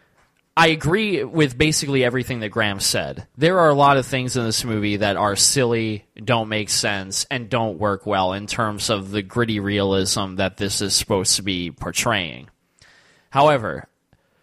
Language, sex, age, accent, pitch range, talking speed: English, male, 20-39, American, 105-135 Hz, 170 wpm